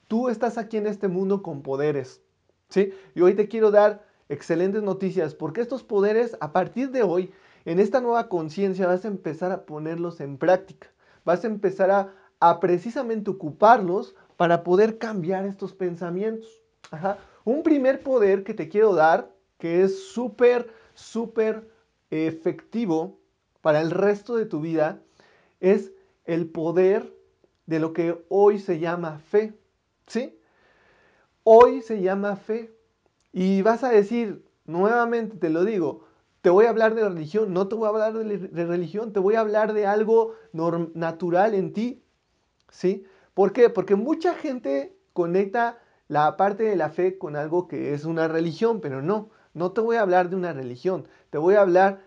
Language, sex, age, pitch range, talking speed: Spanish, male, 40-59, 170-220 Hz, 170 wpm